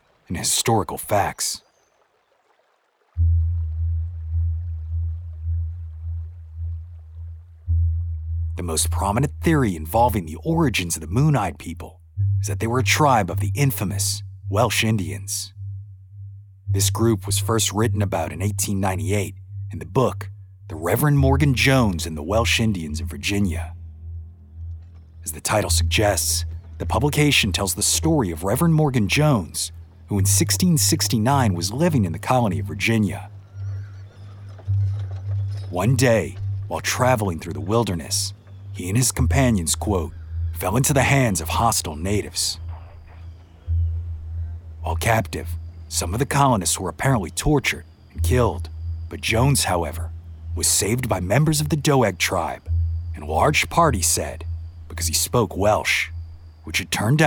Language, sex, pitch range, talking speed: English, male, 85-105 Hz, 125 wpm